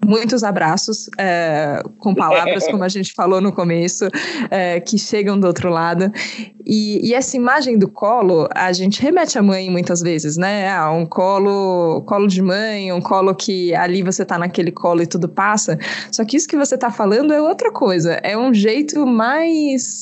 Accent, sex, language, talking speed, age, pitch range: Brazilian, female, Portuguese, 185 wpm, 20-39, 180-220 Hz